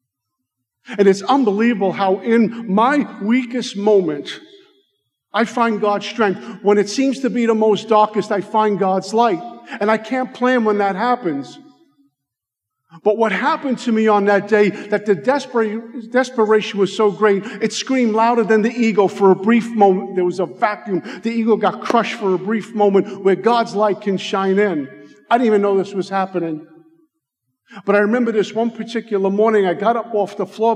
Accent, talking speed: American, 185 wpm